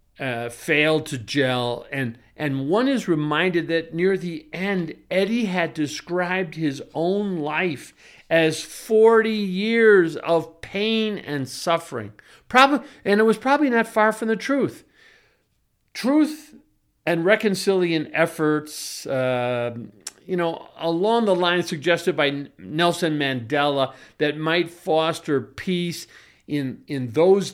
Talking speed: 125 wpm